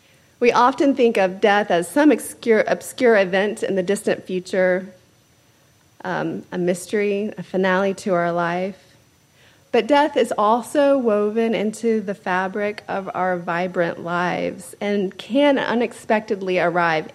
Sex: female